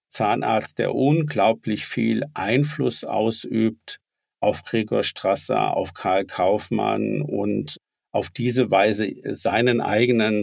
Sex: male